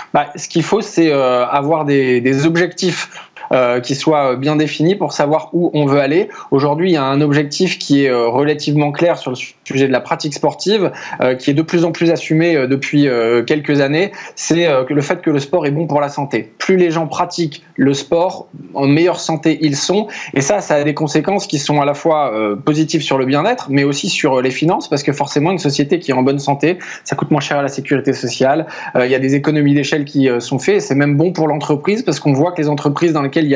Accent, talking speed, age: French, 250 wpm, 20-39